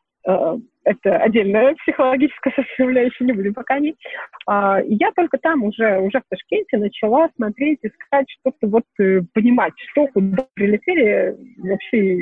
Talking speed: 135 wpm